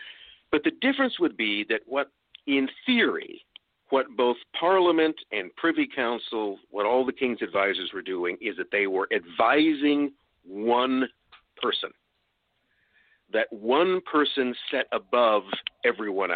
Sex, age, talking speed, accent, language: male, 50-69, 130 wpm, American, English